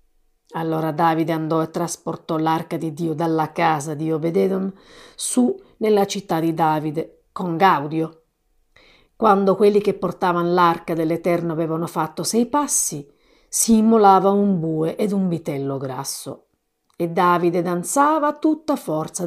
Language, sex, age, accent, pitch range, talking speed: Italian, female, 40-59, native, 160-210 Hz, 130 wpm